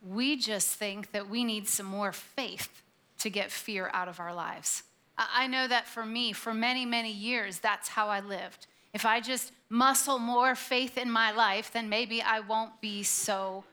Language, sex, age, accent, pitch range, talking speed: English, female, 30-49, American, 220-270 Hz, 190 wpm